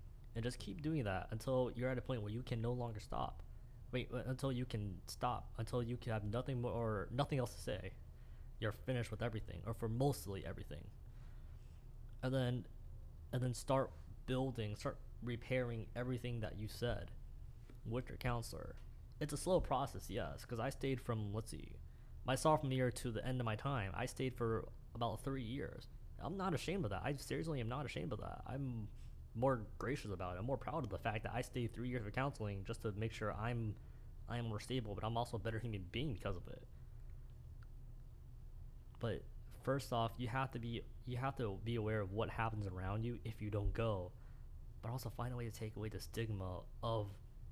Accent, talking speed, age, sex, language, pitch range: American, 205 wpm, 20-39, male, English, 105-125 Hz